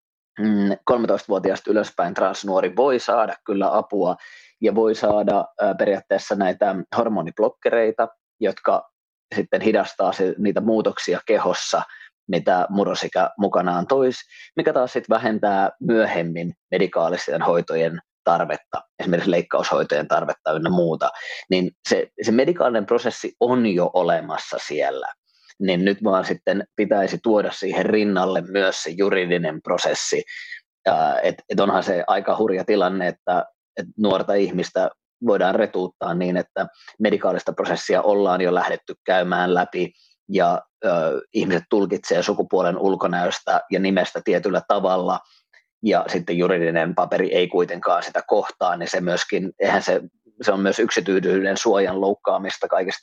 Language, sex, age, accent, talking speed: Finnish, male, 20-39, native, 125 wpm